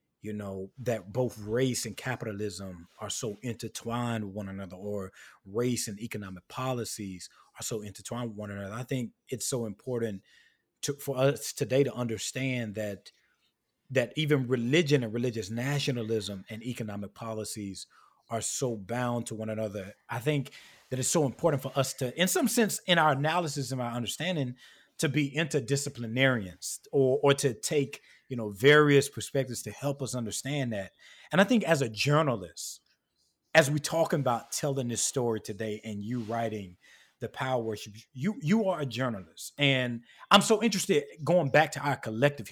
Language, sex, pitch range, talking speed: English, male, 110-145 Hz, 165 wpm